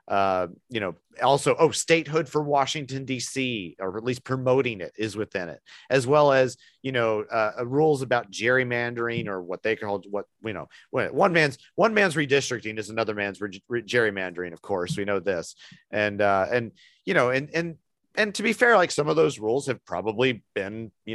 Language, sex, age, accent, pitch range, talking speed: English, male, 40-59, American, 105-140 Hz, 195 wpm